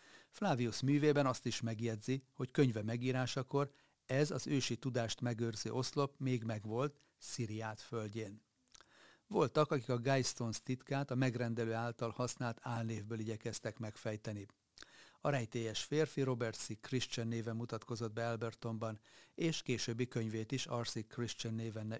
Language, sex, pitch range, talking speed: Hungarian, male, 115-135 Hz, 130 wpm